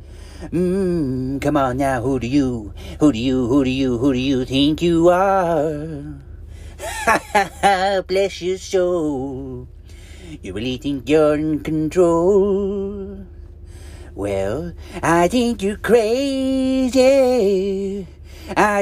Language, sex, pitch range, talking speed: English, male, 130-195 Hz, 115 wpm